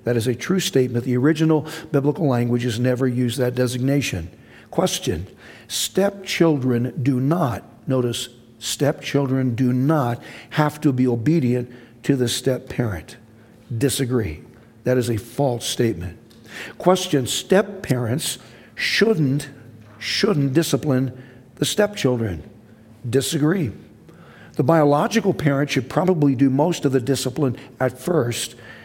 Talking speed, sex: 110 wpm, male